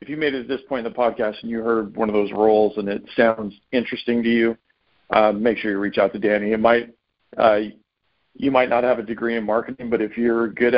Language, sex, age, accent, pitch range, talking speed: English, male, 50-69, American, 110-125 Hz, 255 wpm